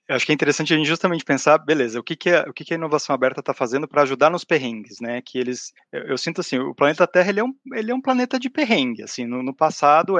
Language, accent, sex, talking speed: Portuguese, Brazilian, male, 290 wpm